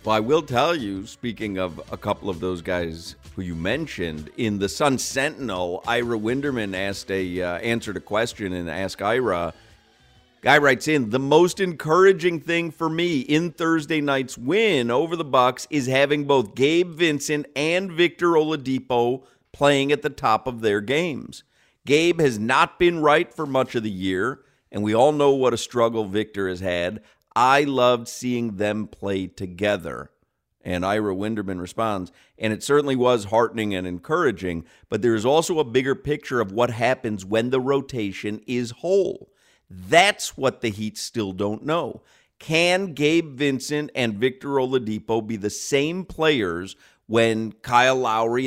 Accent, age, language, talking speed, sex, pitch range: American, 50-69, English, 165 wpm, male, 105-145 Hz